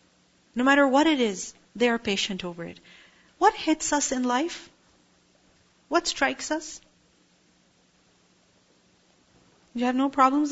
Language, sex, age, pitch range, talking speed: English, female, 40-59, 210-275 Hz, 125 wpm